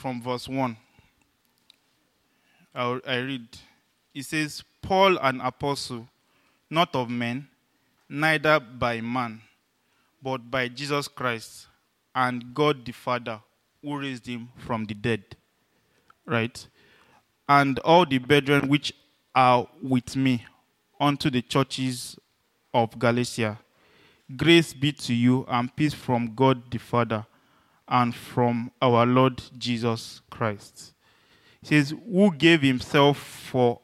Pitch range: 120-140 Hz